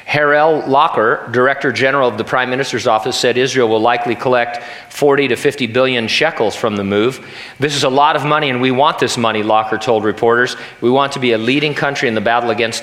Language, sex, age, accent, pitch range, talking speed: English, male, 40-59, American, 120-150 Hz, 220 wpm